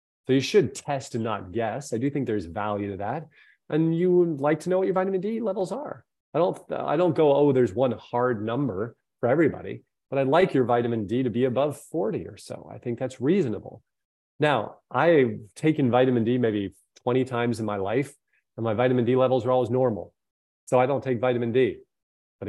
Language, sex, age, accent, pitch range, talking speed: English, male, 30-49, American, 115-155 Hz, 210 wpm